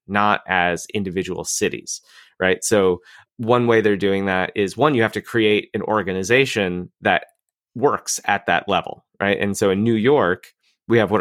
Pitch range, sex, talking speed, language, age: 95-115 Hz, male, 175 wpm, English, 30-49